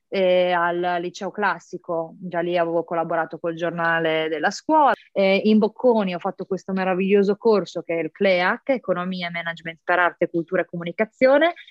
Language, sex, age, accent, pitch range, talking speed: Italian, female, 20-39, native, 170-205 Hz, 165 wpm